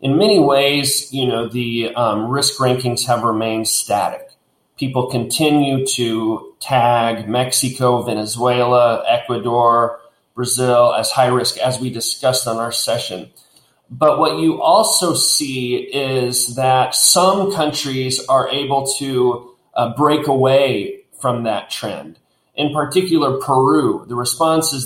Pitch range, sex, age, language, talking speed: 125-145 Hz, male, 30-49, English, 125 wpm